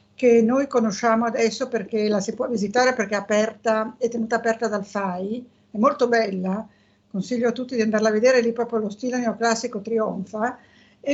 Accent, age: native, 50-69